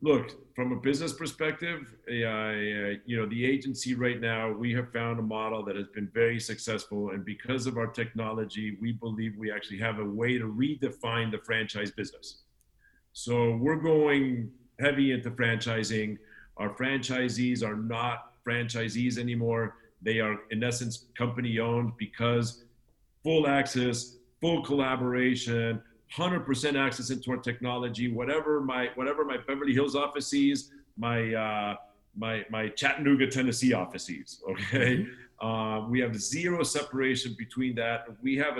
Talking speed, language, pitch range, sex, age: 145 wpm, English, 115-130 Hz, male, 50-69